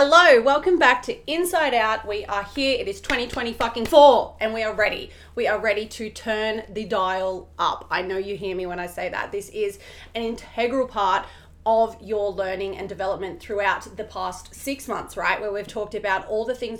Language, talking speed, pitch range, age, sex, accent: English, 205 wpm, 200-265 Hz, 30-49, female, Australian